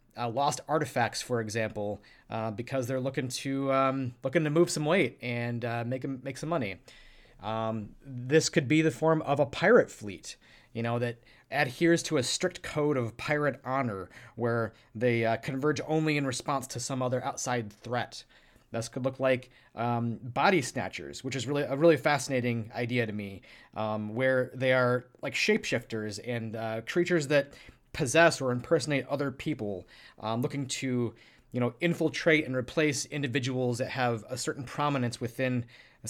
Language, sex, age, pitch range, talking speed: English, male, 30-49, 120-145 Hz, 170 wpm